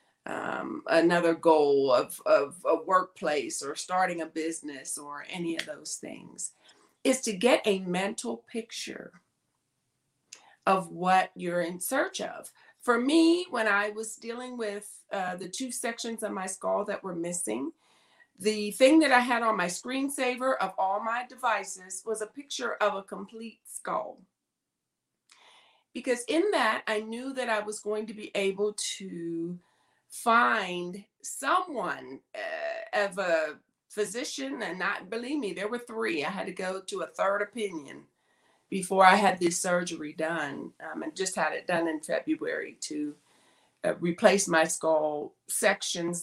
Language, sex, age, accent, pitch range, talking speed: English, female, 40-59, American, 175-250 Hz, 155 wpm